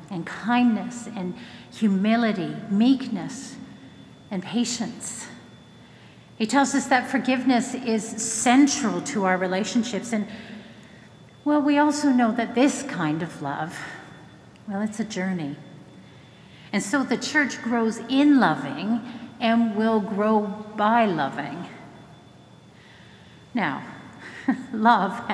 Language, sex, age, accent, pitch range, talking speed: English, female, 40-59, American, 195-245 Hz, 105 wpm